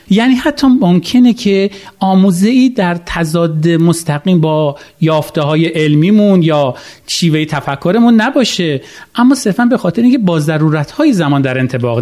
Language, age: Persian, 40-59